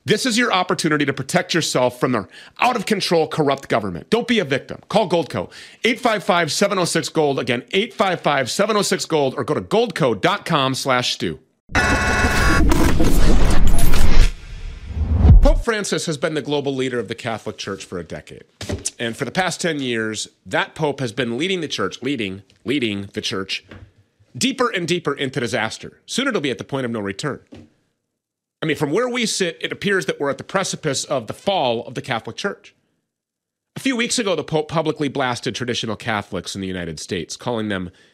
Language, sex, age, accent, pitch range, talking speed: English, male, 40-59, American, 110-175 Hz, 170 wpm